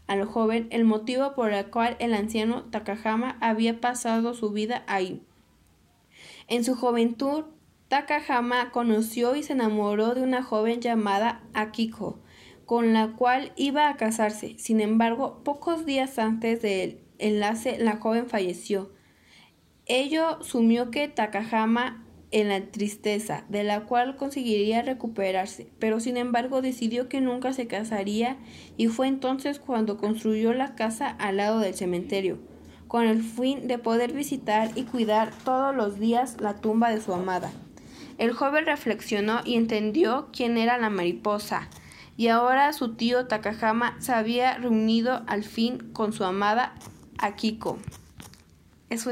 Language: Spanish